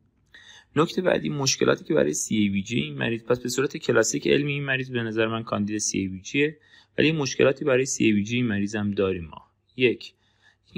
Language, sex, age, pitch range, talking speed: Persian, male, 30-49, 95-120 Hz, 180 wpm